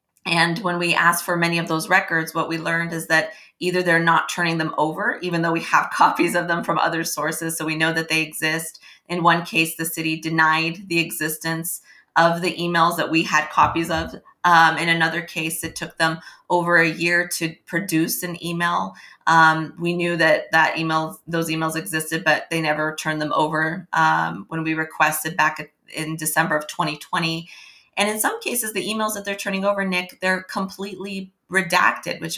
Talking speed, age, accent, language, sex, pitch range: 195 wpm, 30-49, American, English, female, 160-175 Hz